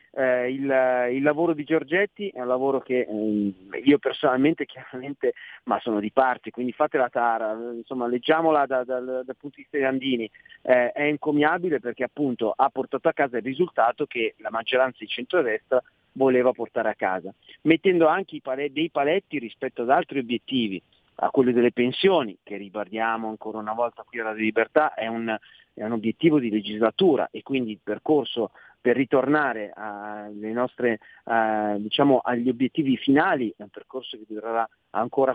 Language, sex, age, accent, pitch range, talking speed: Italian, male, 40-59, native, 110-140 Hz, 160 wpm